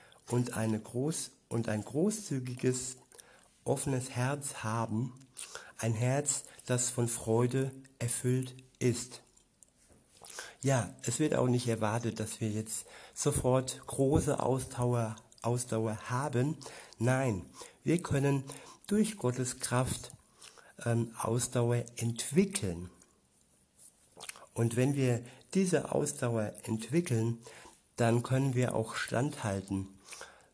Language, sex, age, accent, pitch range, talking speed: German, male, 60-79, German, 115-130 Hz, 95 wpm